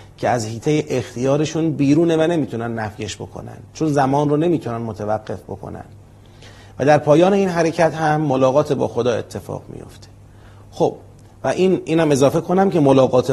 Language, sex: Persian, male